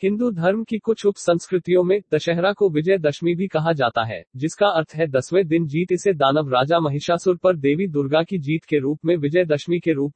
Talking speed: 205 wpm